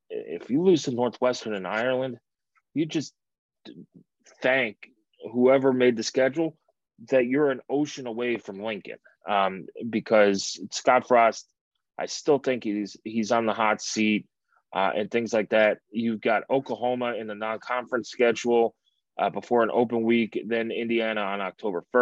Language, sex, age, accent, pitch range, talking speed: English, male, 30-49, American, 110-135 Hz, 150 wpm